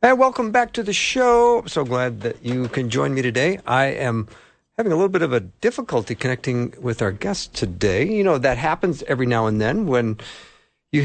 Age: 50-69